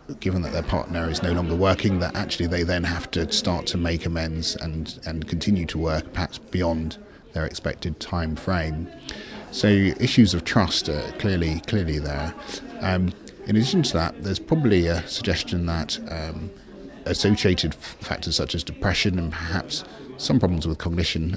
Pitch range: 80-95 Hz